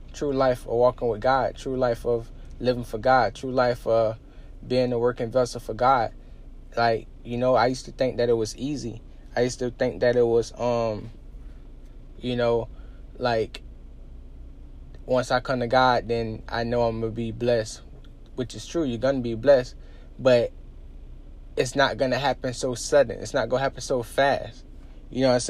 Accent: American